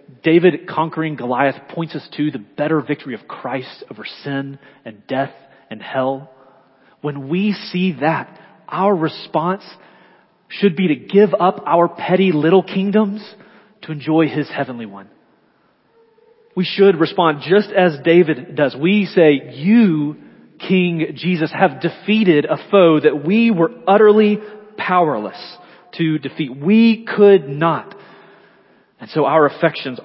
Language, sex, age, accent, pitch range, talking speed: English, male, 30-49, American, 150-205 Hz, 135 wpm